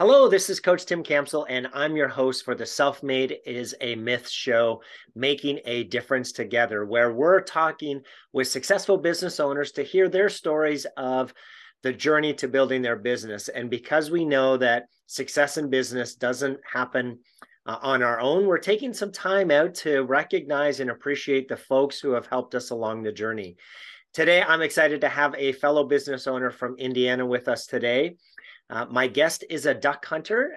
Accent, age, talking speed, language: American, 40-59, 180 wpm, English